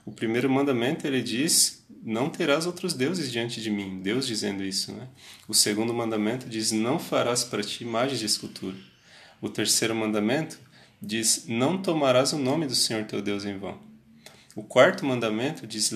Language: Portuguese